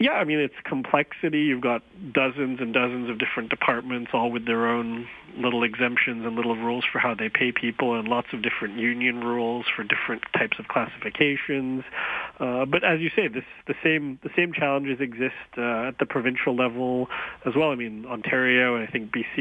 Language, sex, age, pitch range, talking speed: English, male, 40-59, 115-130 Hz, 200 wpm